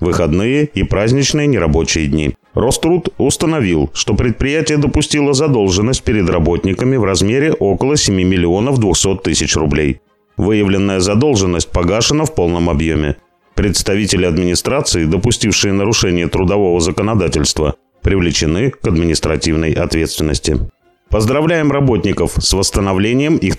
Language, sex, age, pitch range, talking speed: Russian, male, 30-49, 90-125 Hz, 105 wpm